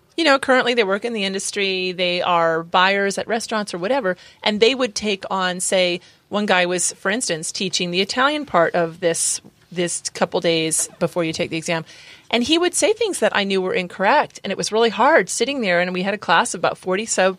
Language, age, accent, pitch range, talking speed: English, 30-49, American, 185-255 Hz, 230 wpm